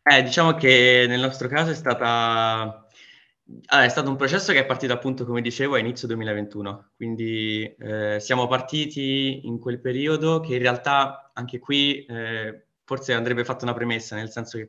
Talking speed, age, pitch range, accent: 175 wpm, 20-39, 115-130 Hz, native